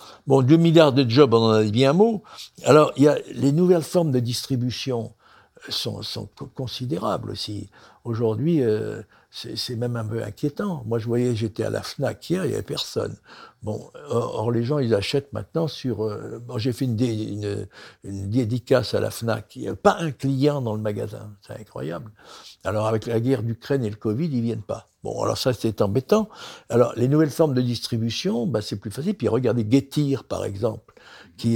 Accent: French